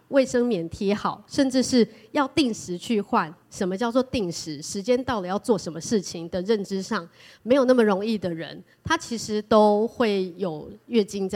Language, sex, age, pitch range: Chinese, female, 20-39, 180-225 Hz